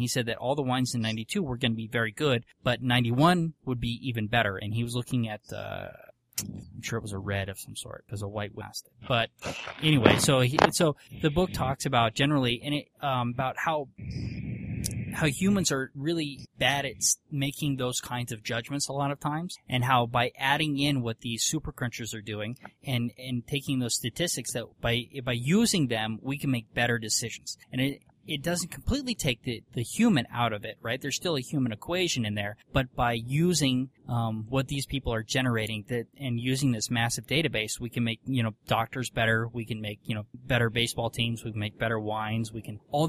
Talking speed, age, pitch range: 210 wpm, 20-39, 115-140 Hz